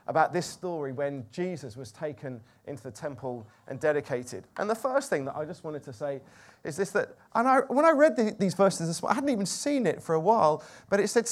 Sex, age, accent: male, 30-49, British